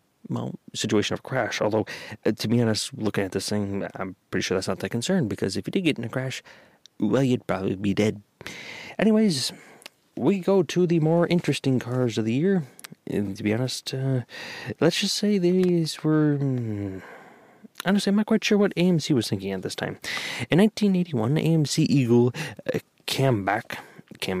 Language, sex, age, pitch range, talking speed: English, male, 30-49, 110-160 Hz, 185 wpm